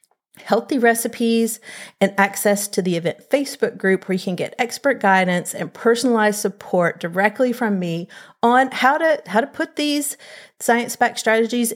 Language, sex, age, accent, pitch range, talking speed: English, female, 40-59, American, 185-255 Hz, 155 wpm